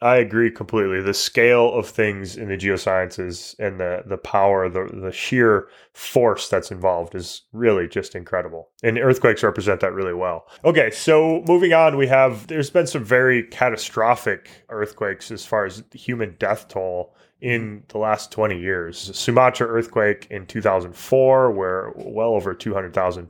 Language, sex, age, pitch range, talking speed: English, male, 20-39, 100-130 Hz, 155 wpm